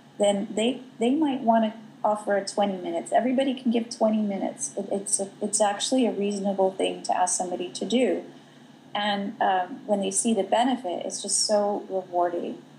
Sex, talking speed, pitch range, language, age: female, 185 wpm, 190-230 Hz, English, 30-49